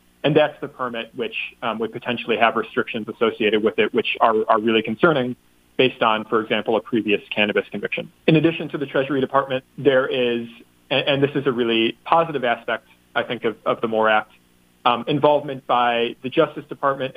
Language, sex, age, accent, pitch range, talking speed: English, male, 30-49, American, 115-140 Hz, 190 wpm